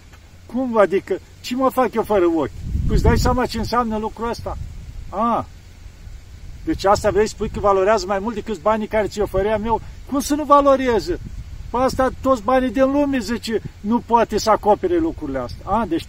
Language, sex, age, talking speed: Romanian, male, 50-69, 195 wpm